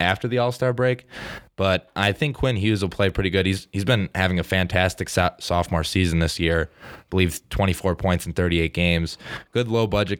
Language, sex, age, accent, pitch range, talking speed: English, male, 20-39, American, 85-95 Hz, 195 wpm